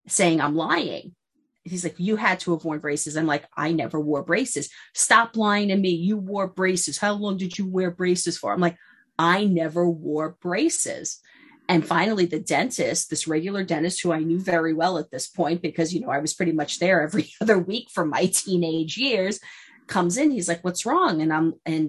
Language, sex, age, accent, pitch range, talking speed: English, female, 30-49, American, 160-220 Hz, 210 wpm